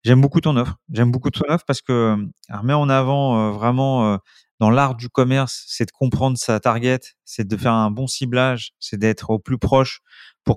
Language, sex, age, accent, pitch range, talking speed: French, male, 30-49, French, 110-135 Hz, 210 wpm